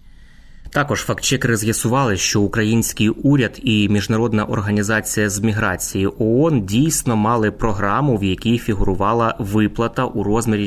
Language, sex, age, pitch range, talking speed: Ukrainian, male, 20-39, 100-125 Hz, 120 wpm